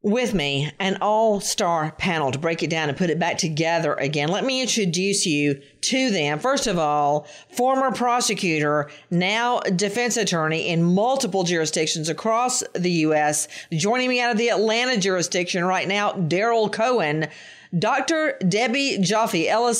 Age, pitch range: 50-69, 175-240 Hz